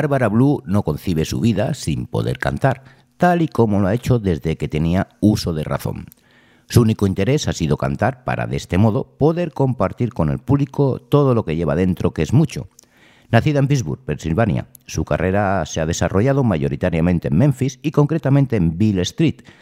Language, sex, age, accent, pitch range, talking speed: Spanish, male, 60-79, Spanish, 85-135 Hz, 185 wpm